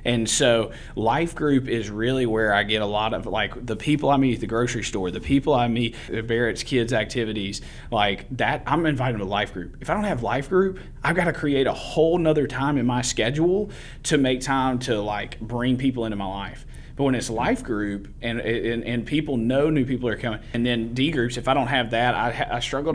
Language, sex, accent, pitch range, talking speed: English, male, American, 110-130 Hz, 235 wpm